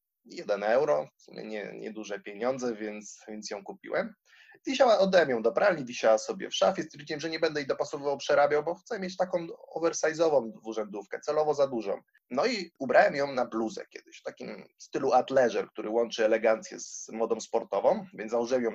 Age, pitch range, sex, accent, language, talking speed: 20-39, 110-145 Hz, male, native, Polish, 170 wpm